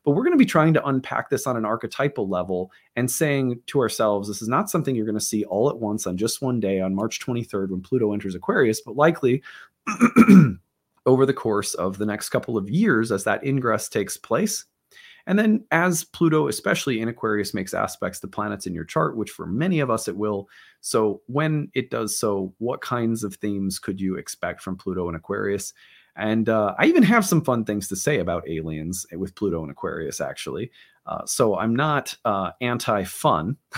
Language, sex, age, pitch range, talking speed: English, male, 30-49, 105-150 Hz, 205 wpm